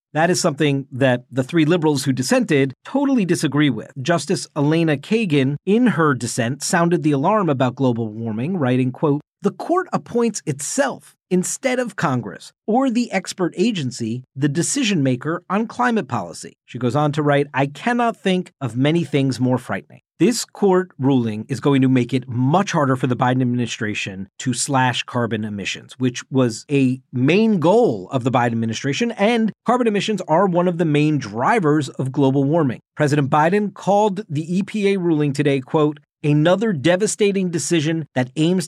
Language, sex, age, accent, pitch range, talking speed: English, male, 40-59, American, 130-180 Hz, 170 wpm